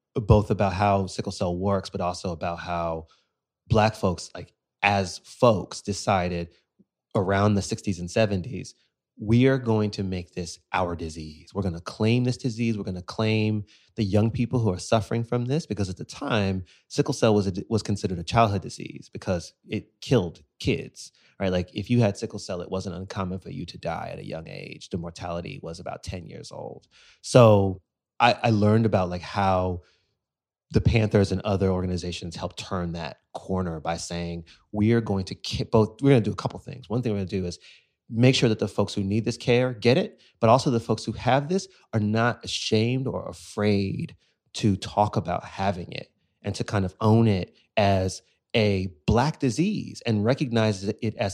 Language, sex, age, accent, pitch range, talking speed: English, male, 30-49, American, 95-115 Hz, 195 wpm